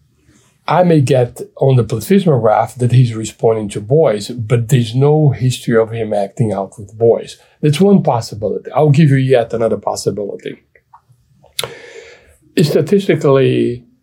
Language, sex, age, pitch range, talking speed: English, male, 60-79, 120-150 Hz, 135 wpm